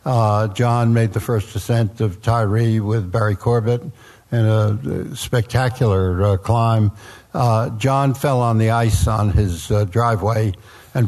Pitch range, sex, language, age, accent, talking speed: 110-125 Hz, male, English, 60-79, American, 145 wpm